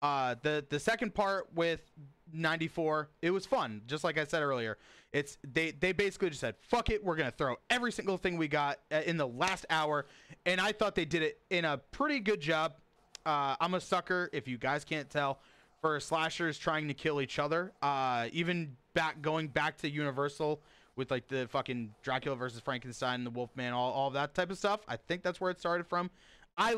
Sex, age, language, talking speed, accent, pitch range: male, 30-49, English, 210 wpm, American, 130-180 Hz